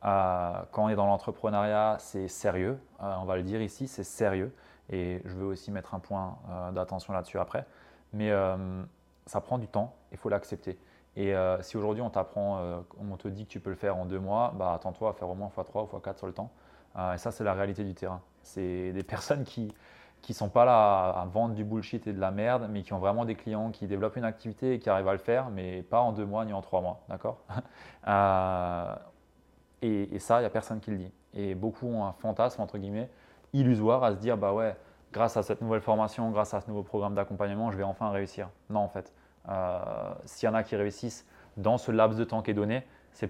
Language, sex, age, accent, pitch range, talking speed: French, male, 20-39, French, 95-110 Hz, 245 wpm